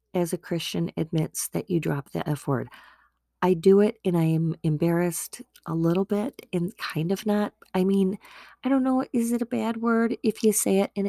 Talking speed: 210 wpm